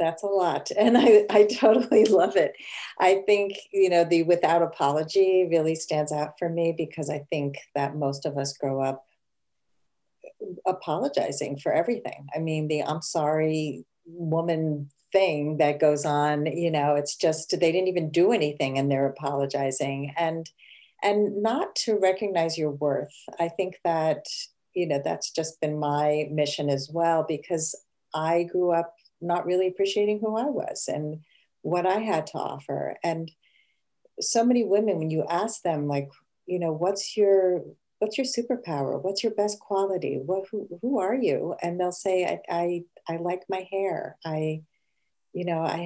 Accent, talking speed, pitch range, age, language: American, 165 wpm, 155-200 Hz, 50-69, English